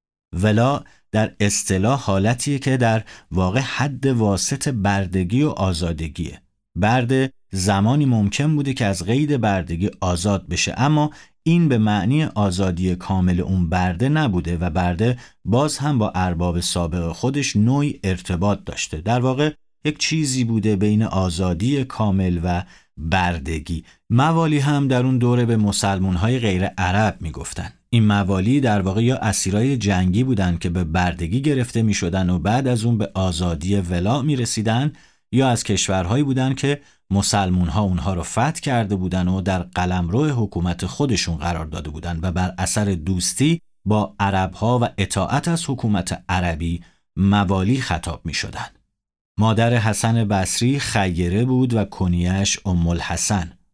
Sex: male